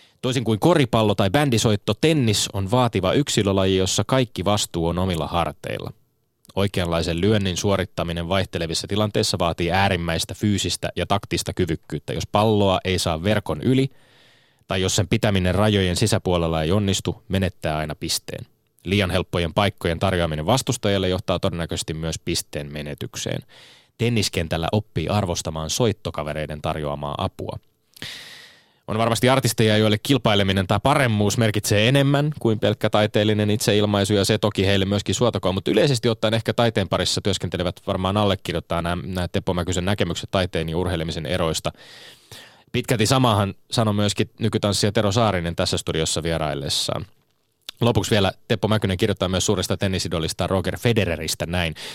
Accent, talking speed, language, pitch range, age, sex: native, 135 wpm, Finnish, 85-110 Hz, 20-39, male